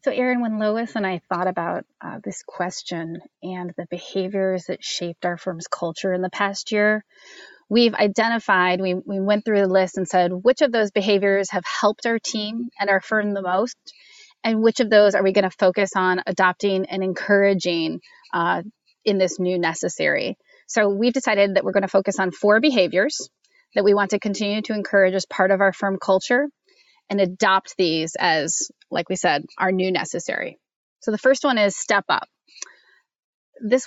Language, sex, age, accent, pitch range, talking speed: English, female, 30-49, American, 185-225 Hz, 185 wpm